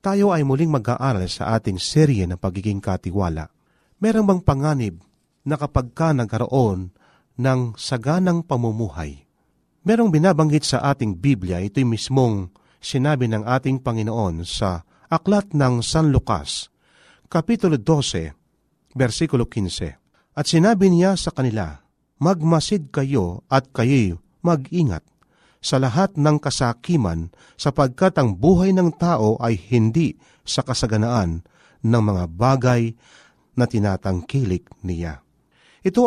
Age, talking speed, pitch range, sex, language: 40-59, 115 wpm, 110-160 Hz, male, Filipino